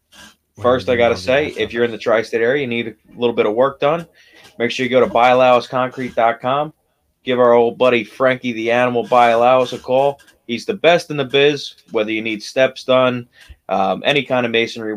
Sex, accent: male, American